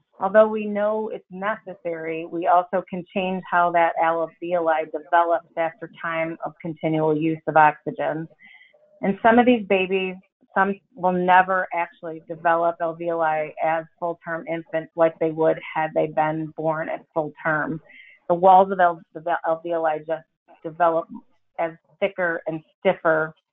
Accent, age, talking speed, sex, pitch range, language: American, 30-49, 135 wpm, female, 165-195 Hz, English